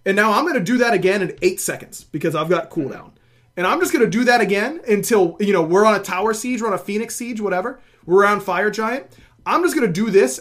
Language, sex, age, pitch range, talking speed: English, male, 30-49, 155-215 Hz, 270 wpm